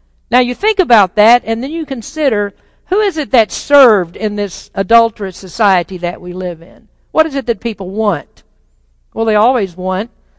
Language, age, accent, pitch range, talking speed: English, 50-69, American, 220-295 Hz, 185 wpm